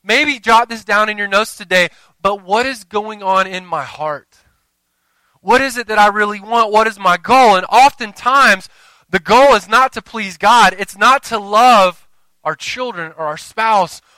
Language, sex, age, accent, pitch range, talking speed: English, male, 20-39, American, 145-200 Hz, 190 wpm